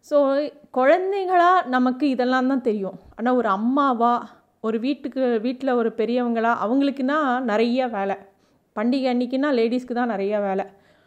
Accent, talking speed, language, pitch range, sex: native, 125 wpm, Tamil, 215-255 Hz, female